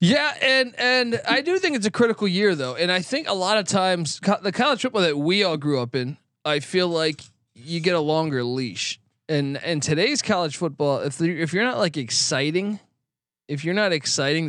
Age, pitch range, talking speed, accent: 20-39, 130-165 Hz, 210 wpm, American